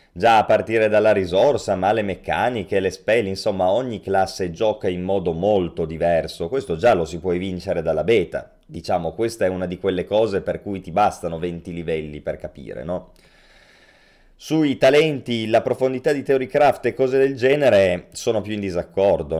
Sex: male